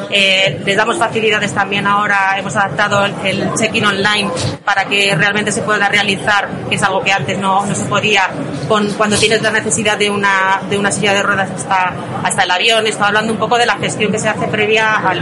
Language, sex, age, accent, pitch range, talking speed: Spanish, female, 30-49, Spanish, 185-210 Hz, 210 wpm